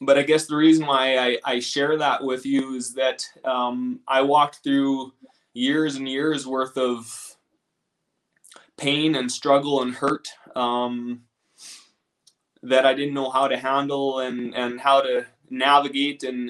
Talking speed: 155 wpm